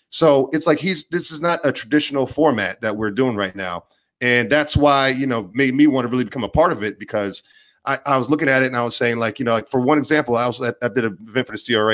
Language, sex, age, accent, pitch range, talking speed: English, male, 30-49, American, 105-135 Hz, 290 wpm